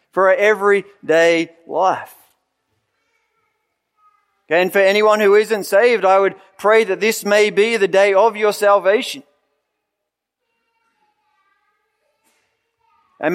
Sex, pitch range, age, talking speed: male, 190-220 Hz, 40-59, 105 wpm